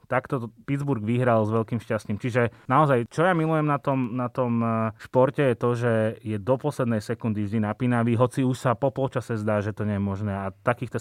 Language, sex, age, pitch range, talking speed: Slovak, male, 30-49, 110-135 Hz, 205 wpm